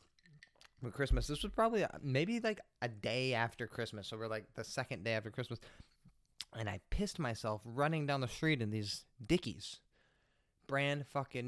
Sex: male